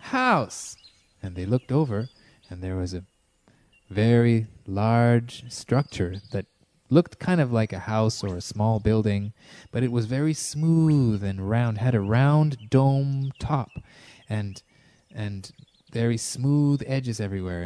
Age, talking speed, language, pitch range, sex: 20-39, 140 wpm, English, 100-140 Hz, male